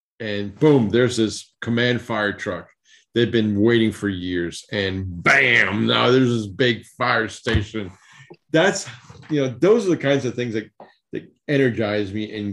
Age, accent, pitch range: 40-59, American, 100-125 Hz